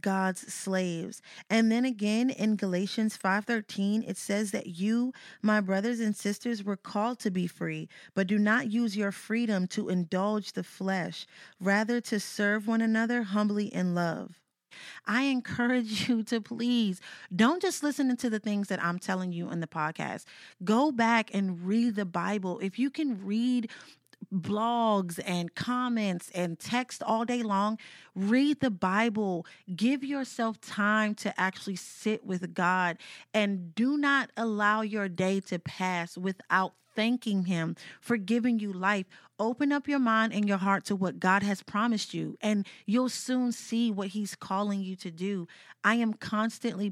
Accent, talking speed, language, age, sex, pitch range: American, 160 wpm, English, 30-49, female, 185-225 Hz